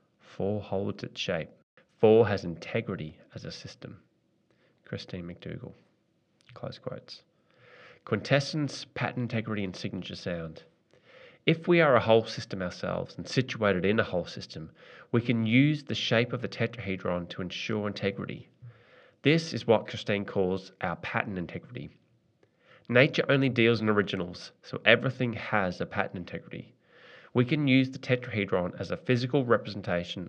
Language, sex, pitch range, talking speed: English, male, 95-125 Hz, 145 wpm